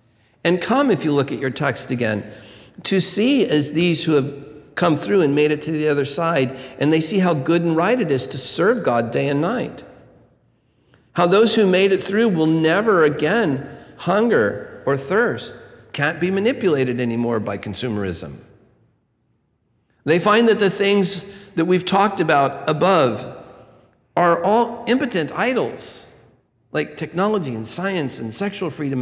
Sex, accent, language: male, American, English